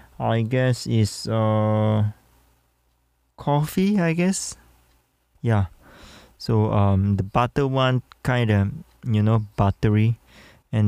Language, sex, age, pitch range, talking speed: English, male, 20-39, 105-120 Hz, 105 wpm